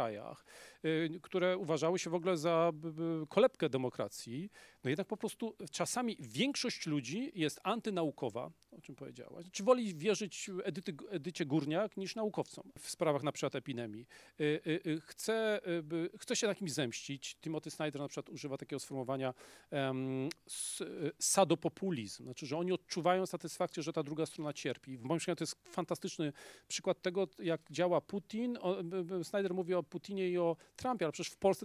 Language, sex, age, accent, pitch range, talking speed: English, male, 40-59, Polish, 160-210 Hz, 155 wpm